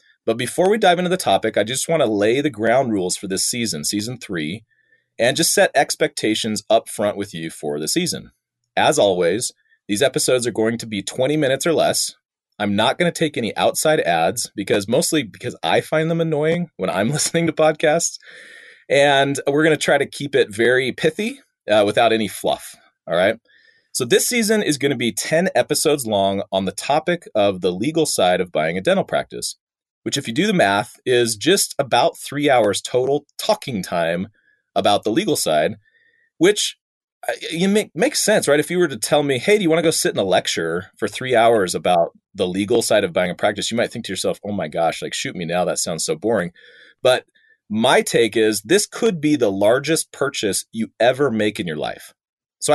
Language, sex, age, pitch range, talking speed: English, male, 30-49, 115-180 Hz, 210 wpm